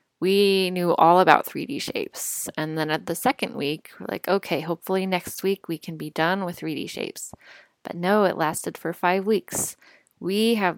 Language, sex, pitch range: English, female, 155-185 Hz